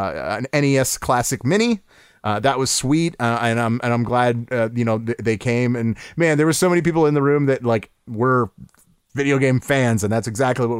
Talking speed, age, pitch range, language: 230 wpm, 30-49, 115-145 Hz, English